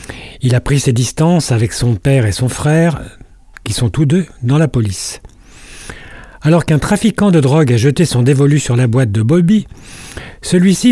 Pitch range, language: 115-155 Hz, French